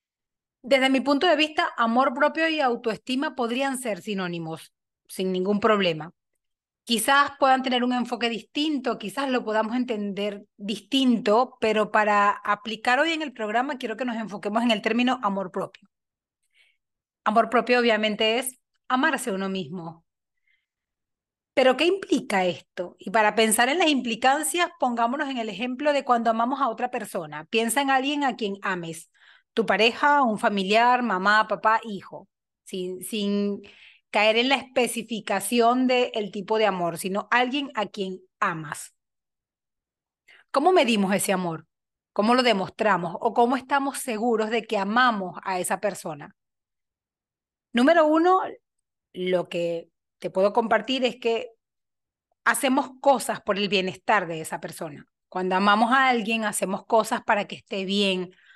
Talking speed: 145 wpm